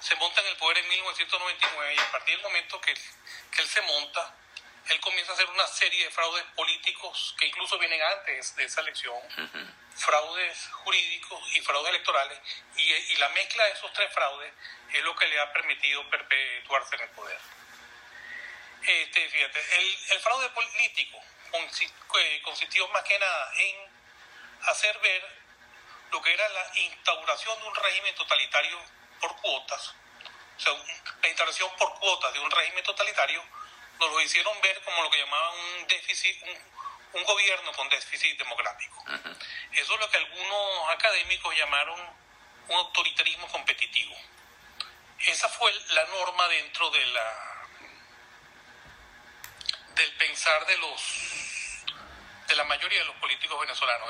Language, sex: Spanish, male